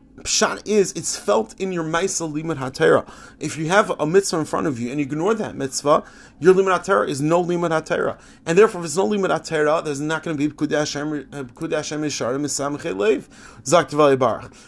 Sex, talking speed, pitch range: male, 175 wpm, 145-185 Hz